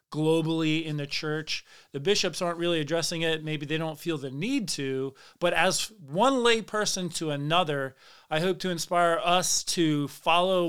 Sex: male